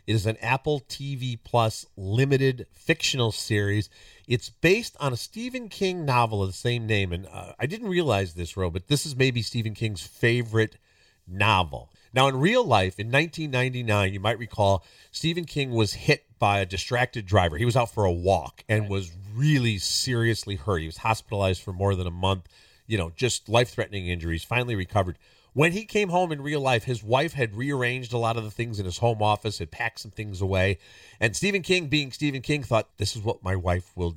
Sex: male